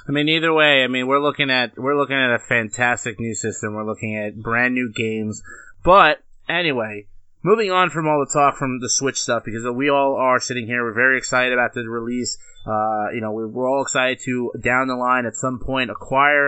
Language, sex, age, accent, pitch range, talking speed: English, male, 20-39, American, 120-150 Hz, 220 wpm